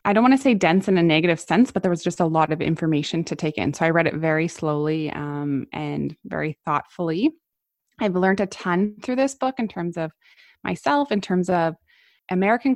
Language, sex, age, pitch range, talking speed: English, female, 20-39, 165-190 Hz, 215 wpm